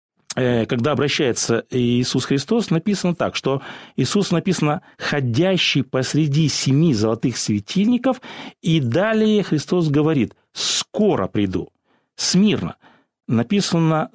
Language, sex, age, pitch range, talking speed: Russian, male, 40-59, 120-185 Hz, 95 wpm